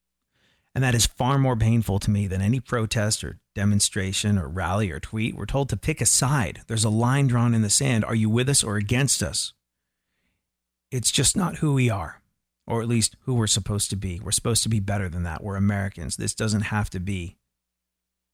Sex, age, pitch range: male, 40-59, 70-115 Hz